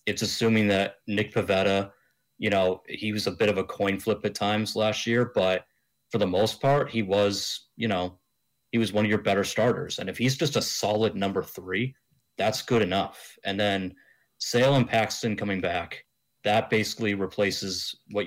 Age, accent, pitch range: 30-49, American, 95-115 Hz